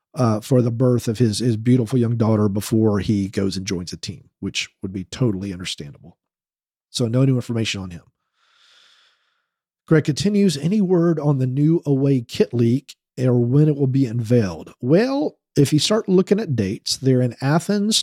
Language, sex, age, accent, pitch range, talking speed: English, male, 40-59, American, 115-150 Hz, 180 wpm